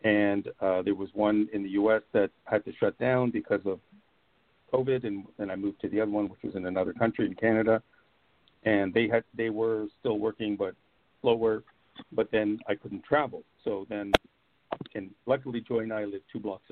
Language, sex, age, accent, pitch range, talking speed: English, male, 50-69, American, 100-115 Hz, 195 wpm